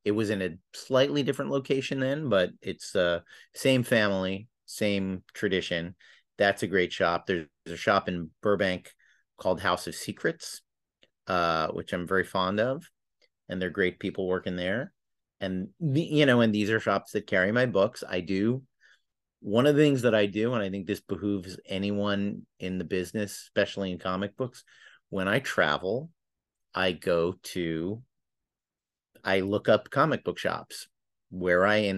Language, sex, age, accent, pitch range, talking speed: English, male, 40-59, American, 95-115 Hz, 165 wpm